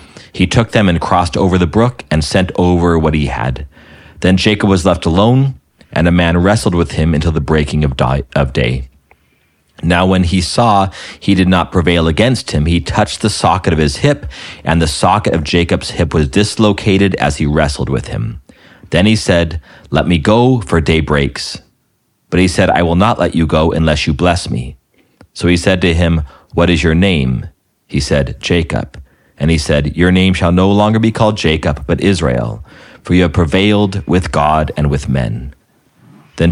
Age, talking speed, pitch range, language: 40-59, 190 wpm, 75-95 Hz, English